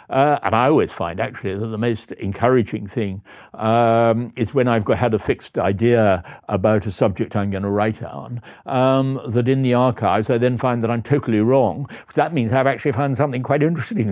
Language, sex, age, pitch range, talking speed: English, male, 60-79, 105-130 Hz, 205 wpm